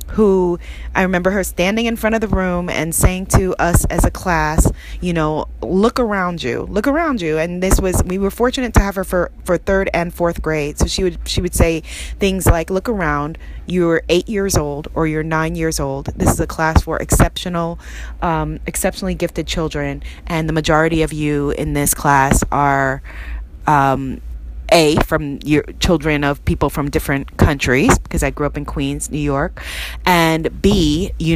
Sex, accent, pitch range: female, American, 145-185 Hz